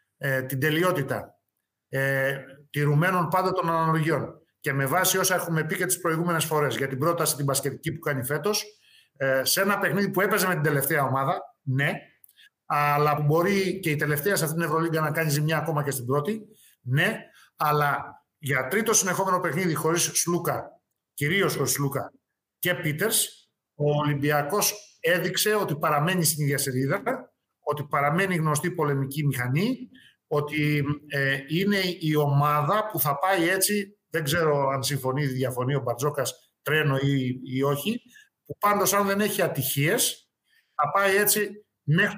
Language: Greek